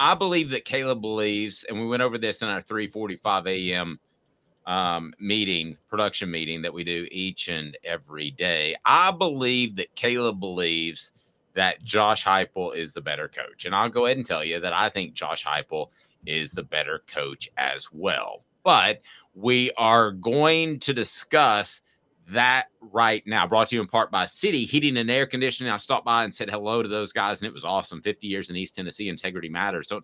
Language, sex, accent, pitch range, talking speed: English, male, American, 95-125 Hz, 190 wpm